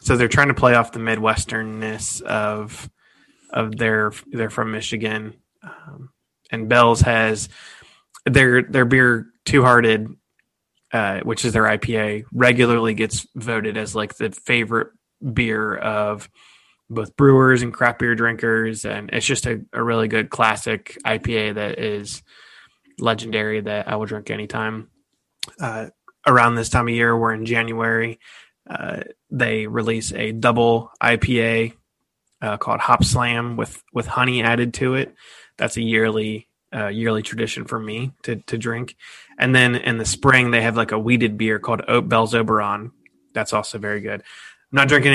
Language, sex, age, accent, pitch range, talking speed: English, male, 20-39, American, 110-120 Hz, 155 wpm